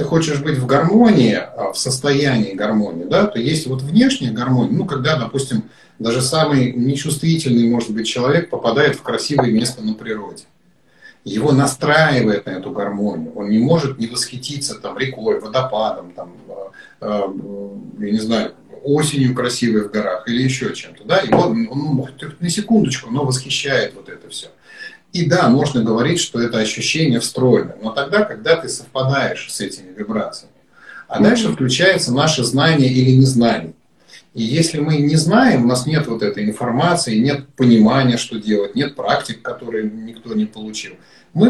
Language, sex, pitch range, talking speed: Russian, male, 115-150 Hz, 160 wpm